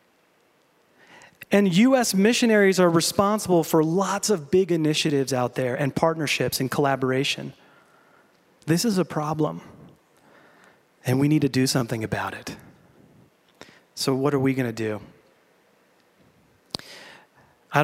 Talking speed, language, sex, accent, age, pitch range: 120 wpm, English, male, American, 30-49, 135-185 Hz